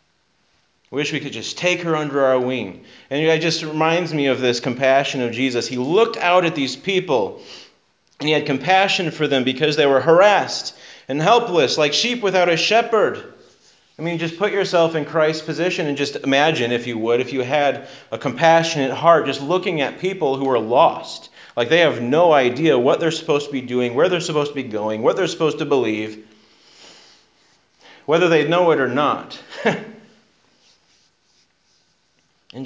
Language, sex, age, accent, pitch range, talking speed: English, male, 30-49, American, 125-160 Hz, 180 wpm